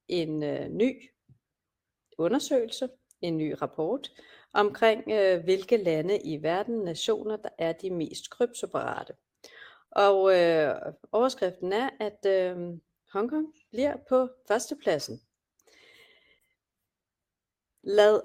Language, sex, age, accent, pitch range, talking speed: Danish, female, 30-49, native, 170-230 Hz, 85 wpm